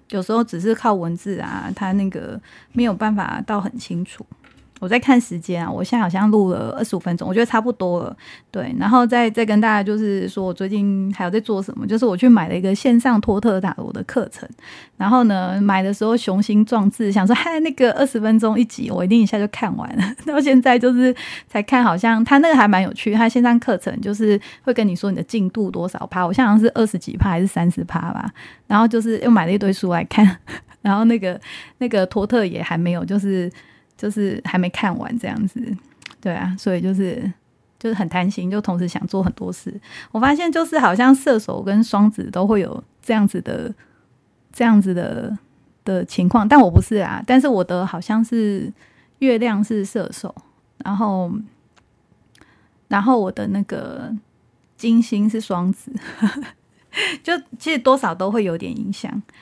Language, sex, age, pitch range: Chinese, female, 20-39, 190-235 Hz